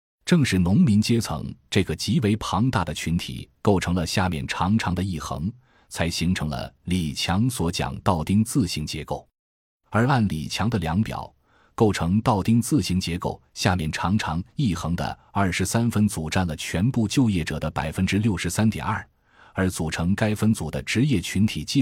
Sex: male